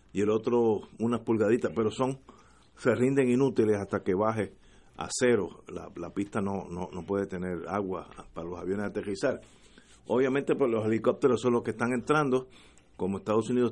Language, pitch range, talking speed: Spanish, 95-115 Hz, 175 wpm